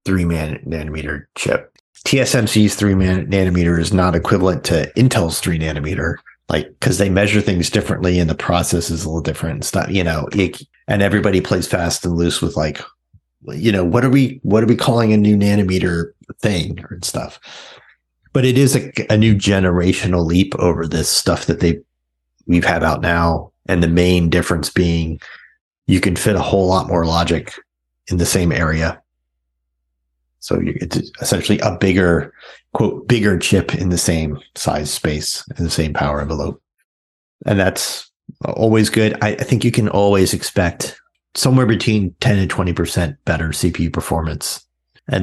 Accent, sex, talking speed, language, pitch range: American, male, 165 wpm, English, 80-105 Hz